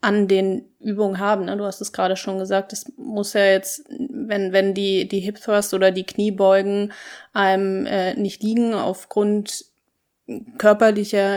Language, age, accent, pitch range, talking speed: German, 20-39, German, 190-215 Hz, 155 wpm